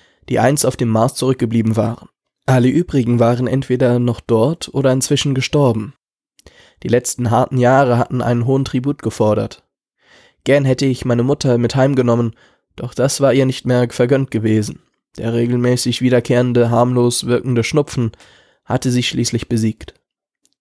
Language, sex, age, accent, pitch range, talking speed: German, male, 10-29, German, 120-135 Hz, 145 wpm